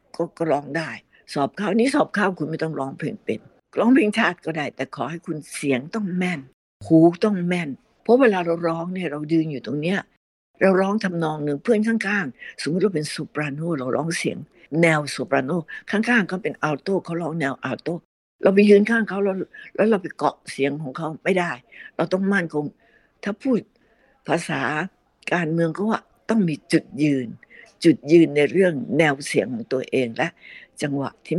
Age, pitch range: 60-79, 150-200 Hz